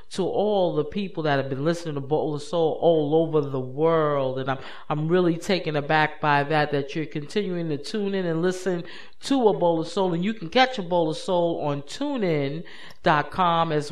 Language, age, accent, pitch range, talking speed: English, 40-59, American, 145-195 Hz, 185 wpm